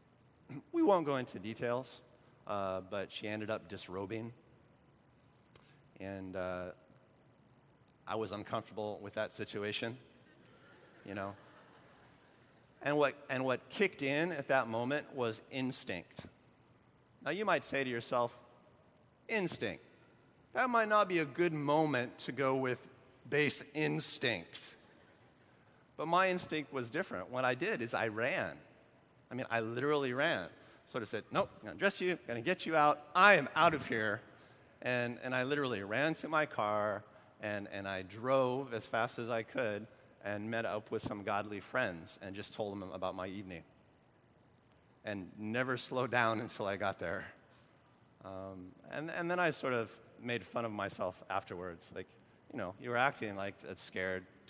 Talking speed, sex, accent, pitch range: 160 wpm, male, American, 105-140 Hz